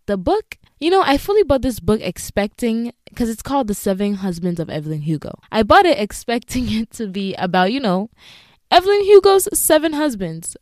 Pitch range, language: 175-240 Hz, English